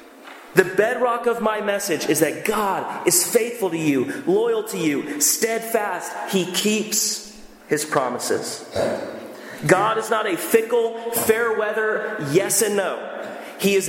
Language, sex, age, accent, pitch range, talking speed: English, male, 30-49, American, 155-215 Hz, 140 wpm